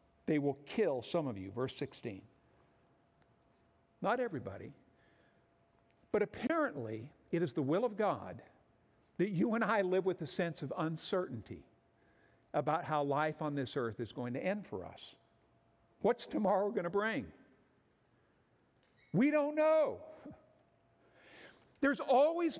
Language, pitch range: English, 180-260 Hz